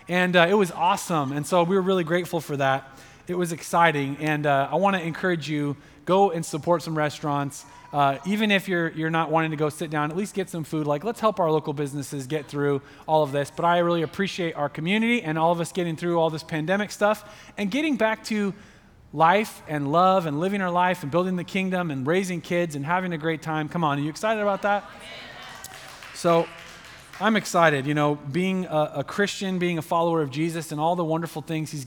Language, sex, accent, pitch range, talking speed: English, male, American, 150-185 Hz, 225 wpm